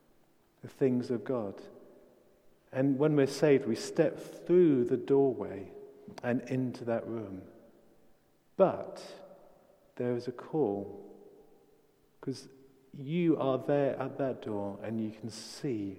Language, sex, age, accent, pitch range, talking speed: English, male, 40-59, British, 105-135 Hz, 125 wpm